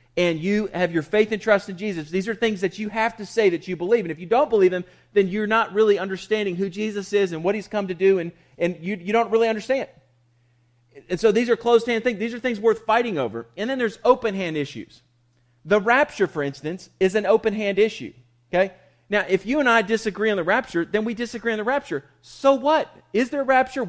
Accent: American